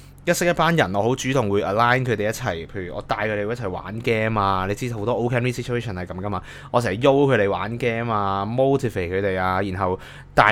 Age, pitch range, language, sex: 20-39, 105-140 Hz, Chinese, male